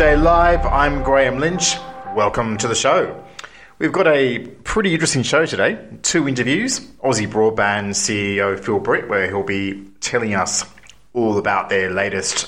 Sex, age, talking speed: male, 30-49, 150 wpm